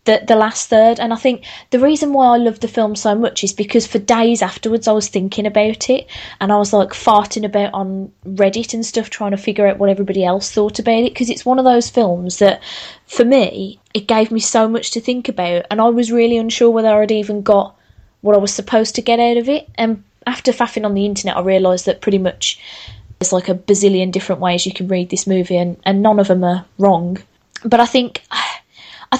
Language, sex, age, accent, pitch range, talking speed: English, female, 20-39, British, 200-235 Hz, 235 wpm